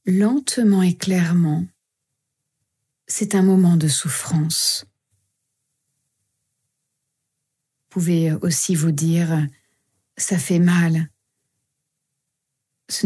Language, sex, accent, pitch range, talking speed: French, female, French, 130-180 Hz, 80 wpm